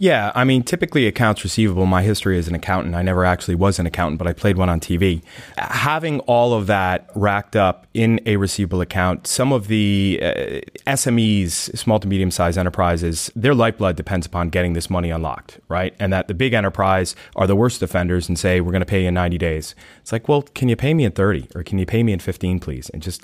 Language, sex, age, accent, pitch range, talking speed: English, male, 30-49, American, 90-110 Hz, 230 wpm